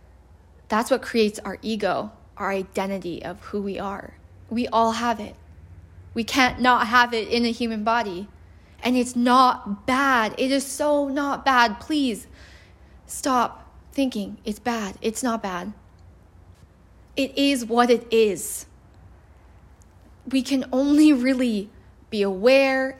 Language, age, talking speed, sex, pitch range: English, 20-39, 135 wpm, female, 195-260 Hz